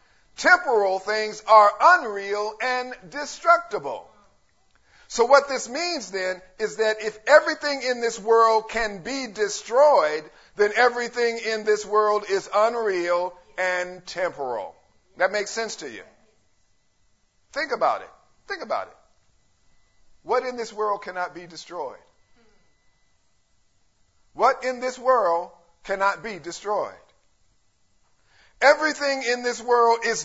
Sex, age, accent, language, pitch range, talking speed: male, 50-69, American, English, 210-260 Hz, 120 wpm